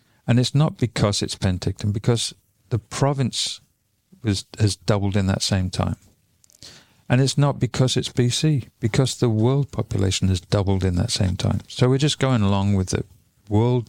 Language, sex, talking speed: English, male, 170 wpm